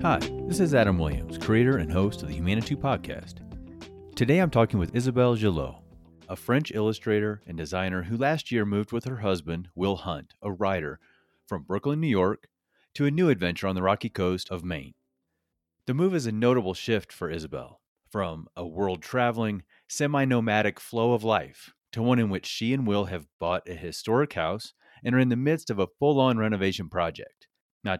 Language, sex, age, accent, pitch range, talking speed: English, male, 30-49, American, 90-120 Hz, 185 wpm